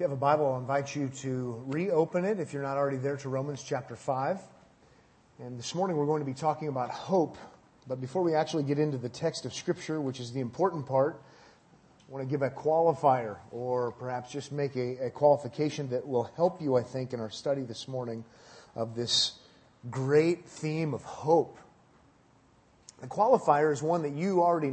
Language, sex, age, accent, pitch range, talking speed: English, male, 30-49, American, 130-155 Hz, 200 wpm